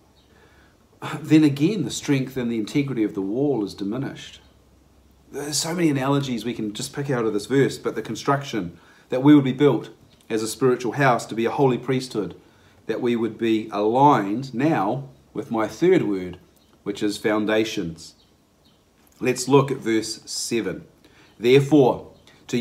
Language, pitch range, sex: English, 110-140 Hz, male